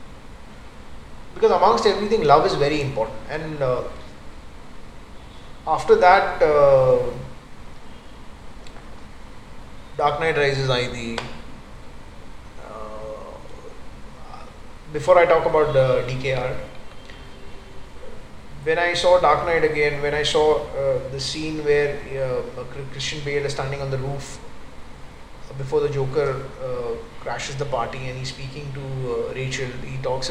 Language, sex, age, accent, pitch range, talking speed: Hindi, male, 20-39, native, 125-150 Hz, 125 wpm